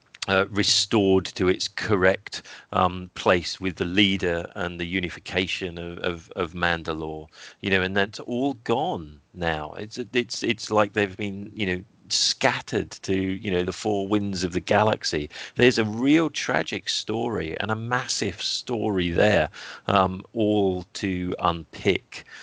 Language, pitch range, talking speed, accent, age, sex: English, 90-105 Hz, 145 wpm, British, 40-59, male